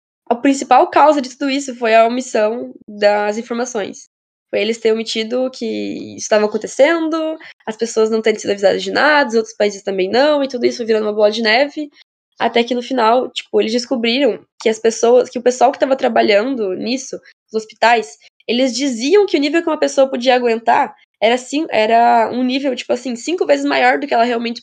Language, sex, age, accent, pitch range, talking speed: Portuguese, female, 10-29, Brazilian, 220-270 Hz, 200 wpm